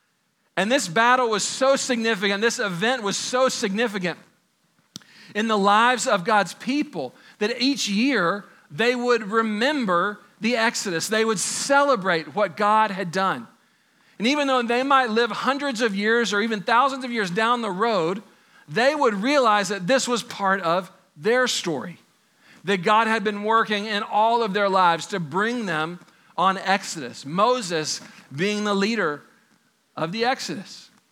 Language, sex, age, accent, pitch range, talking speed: English, male, 40-59, American, 195-245 Hz, 155 wpm